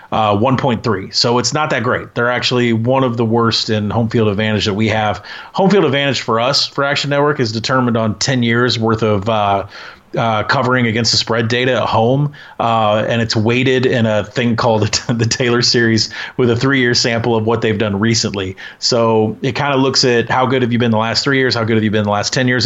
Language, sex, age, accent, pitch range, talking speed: English, male, 30-49, American, 110-125 Hz, 235 wpm